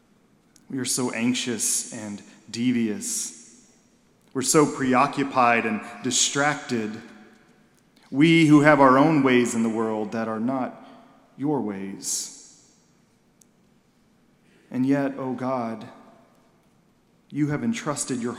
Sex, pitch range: male, 125-150 Hz